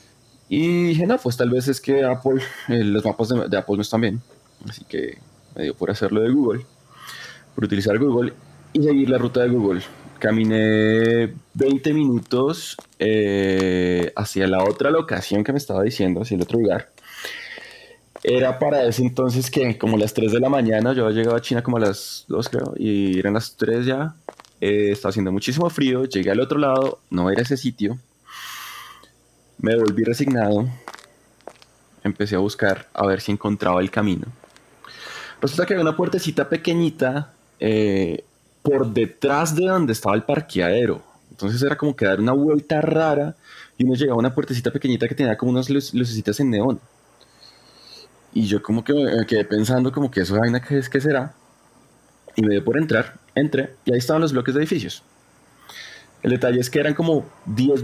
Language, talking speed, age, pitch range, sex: Spanish, 180 wpm, 20-39, 105-140 Hz, male